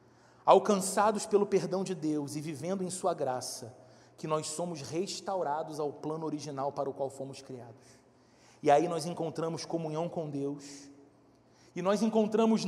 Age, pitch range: 40-59, 150-220 Hz